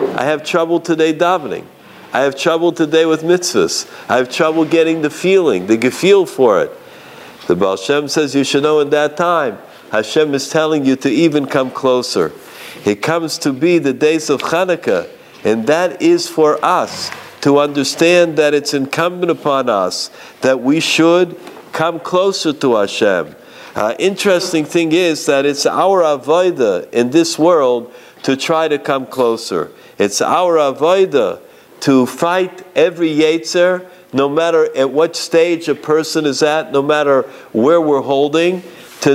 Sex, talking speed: male, 160 wpm